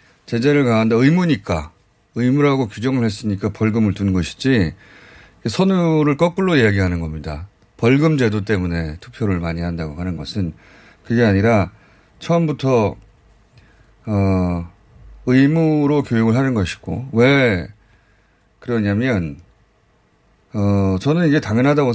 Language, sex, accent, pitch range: Korean, male, native, 95-130 Hz